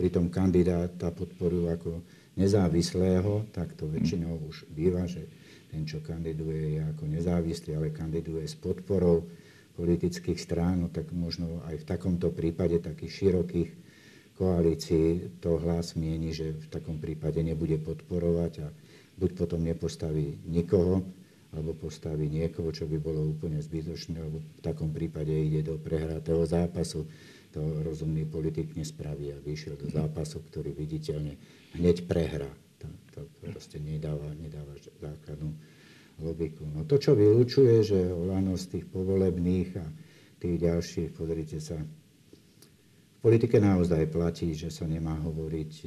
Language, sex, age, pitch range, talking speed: Slovak, male, 50-69, 80-85 Hz, 135 wpm